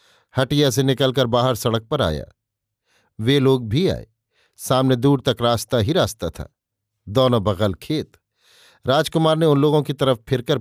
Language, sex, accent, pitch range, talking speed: Hindi, male, native, 110-140 Hz, 160 wpm